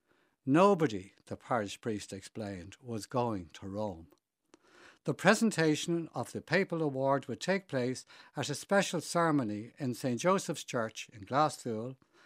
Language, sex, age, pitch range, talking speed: English, male, 60-79, 120-165 Hz, 135 wpm